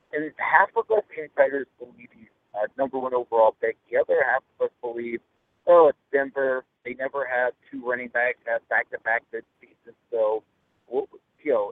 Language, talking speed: English, 190 wpm